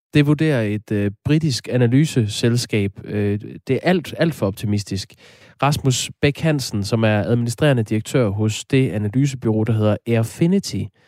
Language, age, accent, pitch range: Danish, 20-39, native, 110-140 Hz